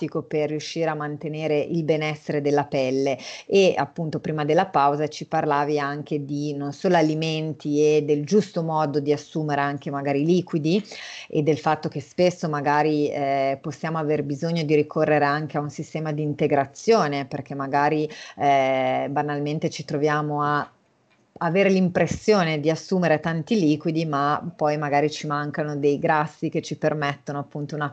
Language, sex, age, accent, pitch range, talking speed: Italian, female, 30-49, native, 145-165 Hz, 155 wpm